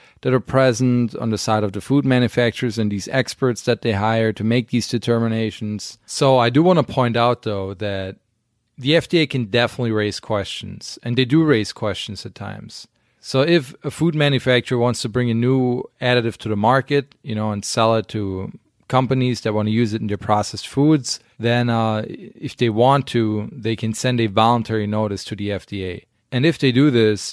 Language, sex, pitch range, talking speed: English, male, 105-125 Hz, 200 wpm